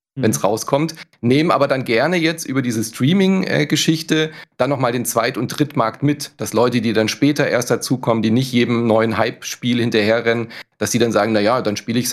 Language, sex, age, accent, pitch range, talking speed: German, male, 30-49, German, 115-145 Hz, 210 wpm